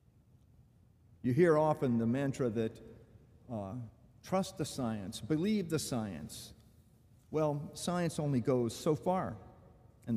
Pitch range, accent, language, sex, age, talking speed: 110-140 Hz, American, English, male, 50-69, 120 wpm